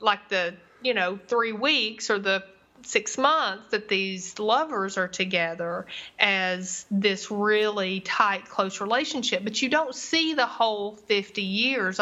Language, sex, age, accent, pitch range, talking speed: English, female, 30-49, American, 190-230 Hz, 145 wpm